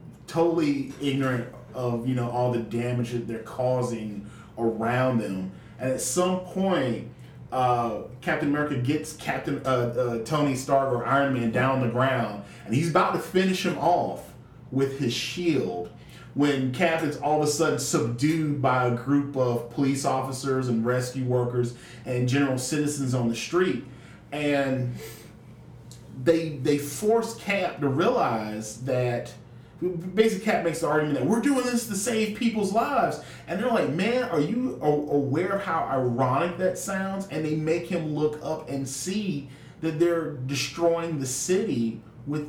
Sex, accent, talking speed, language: male, American, 160 wpm, English